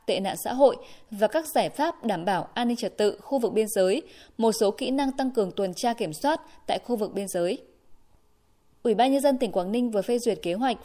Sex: female